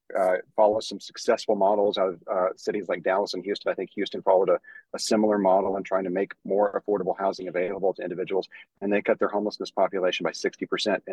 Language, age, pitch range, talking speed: English, 40-59, 95-140 Hz, 210 wpm